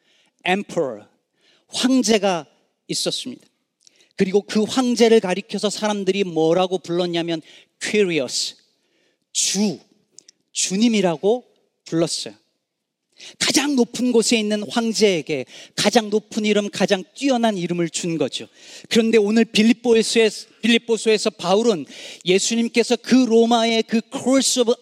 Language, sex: Korean, male